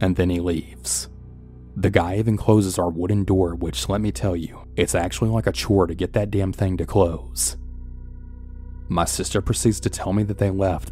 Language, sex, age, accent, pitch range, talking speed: English, male, 30-49, American, 85-100 Hz, 205 wpm